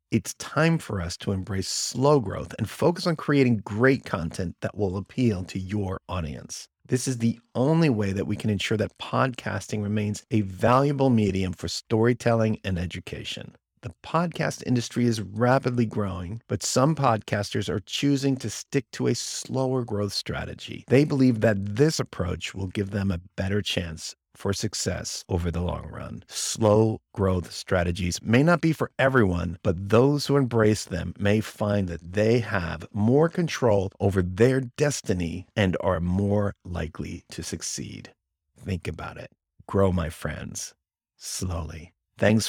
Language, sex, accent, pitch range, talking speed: English, male, American, 95-125 Hz, 155 wpm